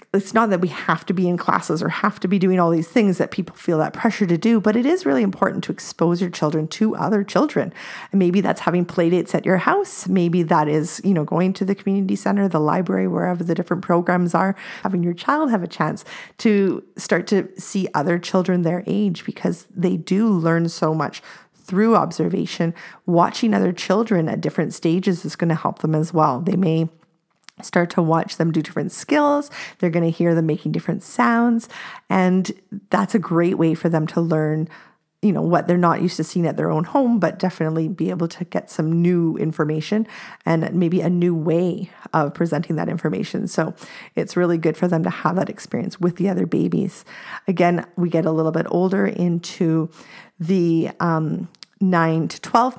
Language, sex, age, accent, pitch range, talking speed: English, female, 40-59, American, 165-195 Hz, 200 wpm